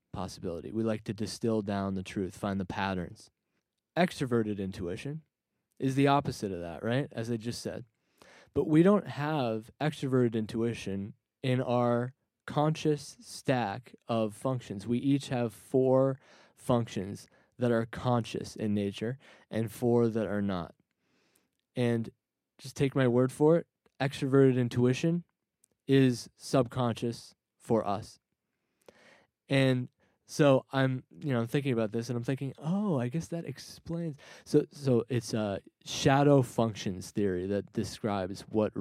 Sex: male